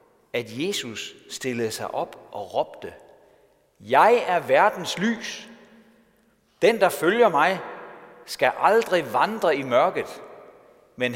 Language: Danish